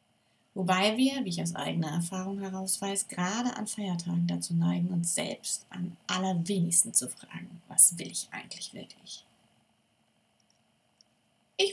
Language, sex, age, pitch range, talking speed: German, female, 30-49, 180-250 Hz, 135 wpm